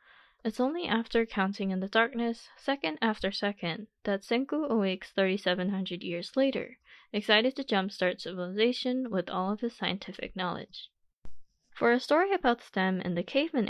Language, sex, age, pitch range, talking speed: English, female, 10-29, 180-235 Hz, 150 wpm